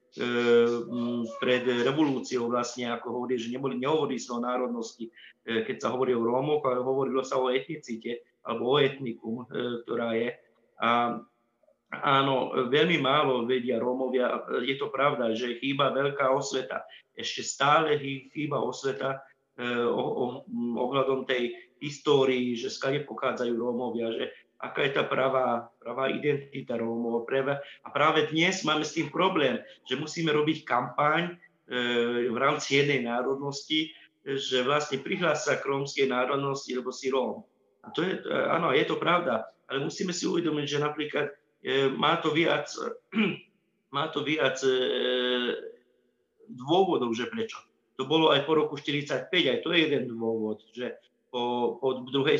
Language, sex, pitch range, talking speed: Slovak, male, 120-150 Hz, 145 wpm